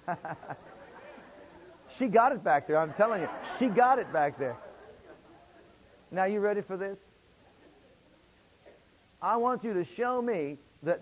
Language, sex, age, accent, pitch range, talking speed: English, male, 50-69, American, 150-215 Hz, 135 wpm